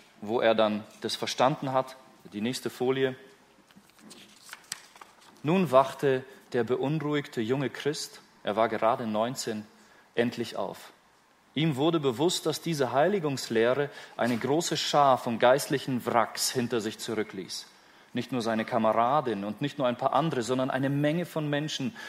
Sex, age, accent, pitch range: male, 30-49, German, 120-170 Hz